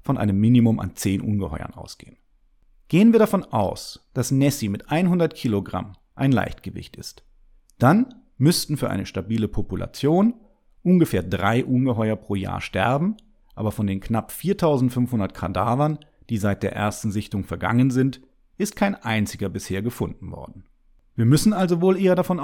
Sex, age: male, 30-49